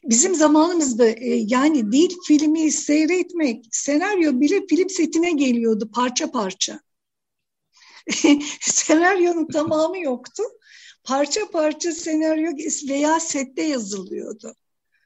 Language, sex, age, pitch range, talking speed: Turkish, female, 60-79, 225-310 Hz, 90 wpm